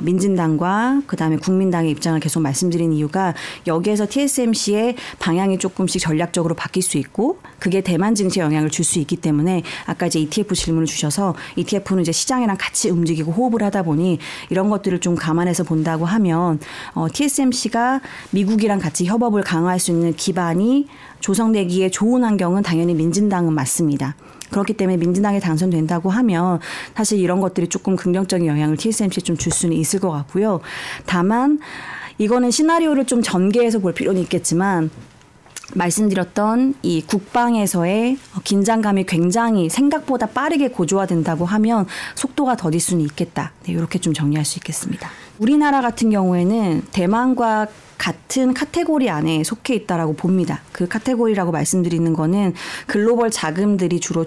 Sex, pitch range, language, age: female, 165-225 Hz, Korean, 40-59